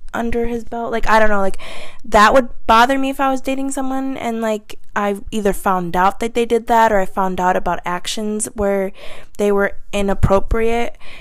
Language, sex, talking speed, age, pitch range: English, female, 200 wpm, 20-39, 190-230 Hz